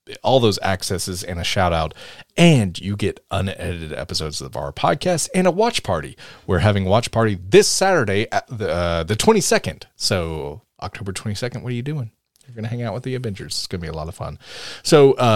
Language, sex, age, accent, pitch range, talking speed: English, male, 30-49, American, 90-125 Hz, 215 wpm